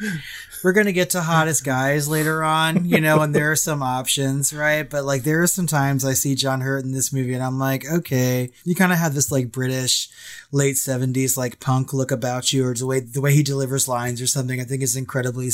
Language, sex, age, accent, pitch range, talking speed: English, male, 20-39, American, 120-145 Hz, 240 wpm